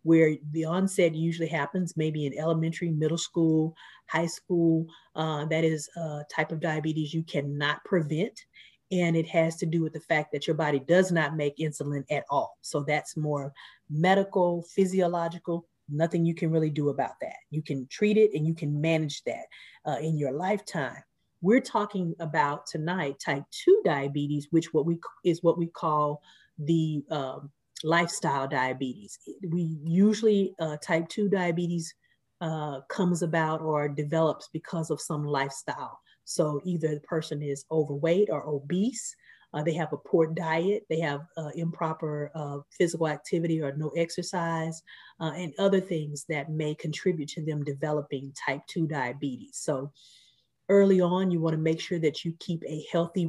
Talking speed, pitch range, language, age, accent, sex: 165 wpm, 150-170 Hz, English, 30-49, American, female